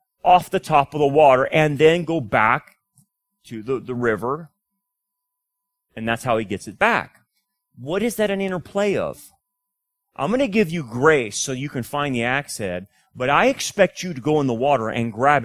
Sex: male